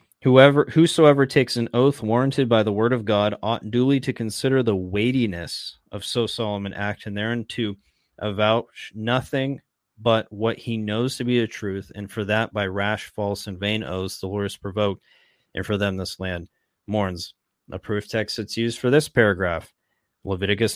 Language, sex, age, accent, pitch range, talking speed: English, male, 30-49, American, 100-115 Hz, 180 wpm